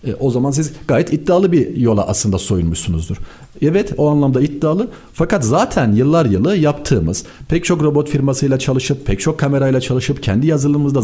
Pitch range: 105-160 Hz